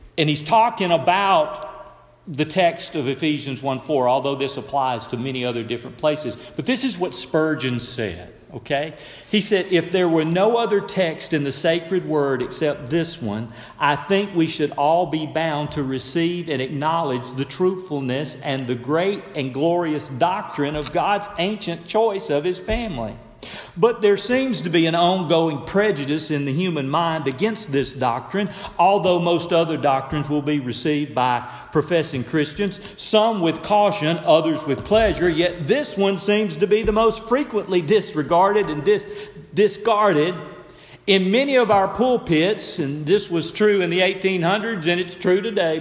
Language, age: English, 40-59